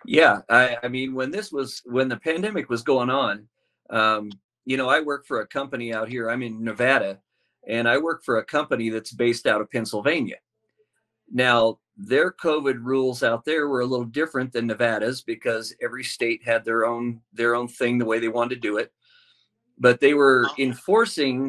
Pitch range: 115-135 Hz